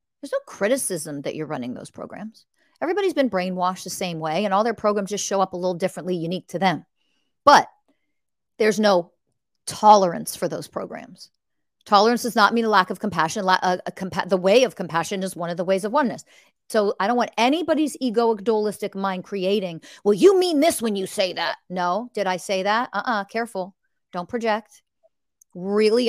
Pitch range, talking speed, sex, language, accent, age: 180-225 Hz, 185 wpm, female, English, American, 40-59